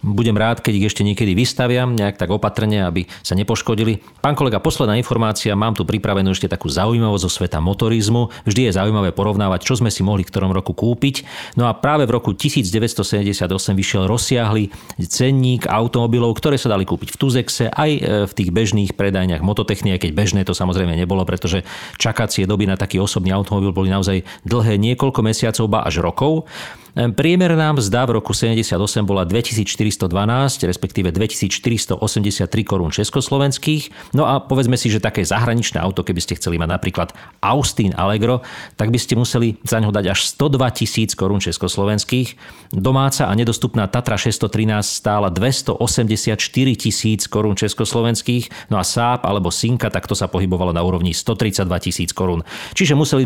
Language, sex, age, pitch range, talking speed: Slovak, male, 40-59, 95-120 Hz, 160 wpm